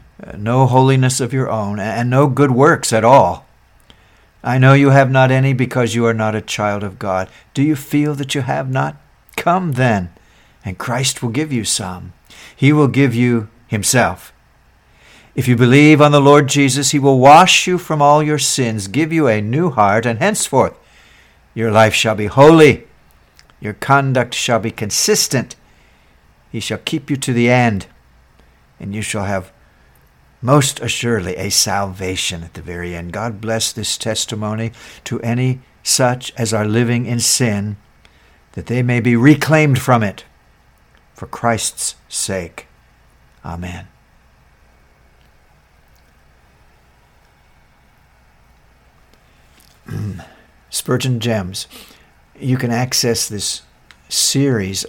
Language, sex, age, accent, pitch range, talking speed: English, male, 60-79, American, 95-130 Hz, 140 wpm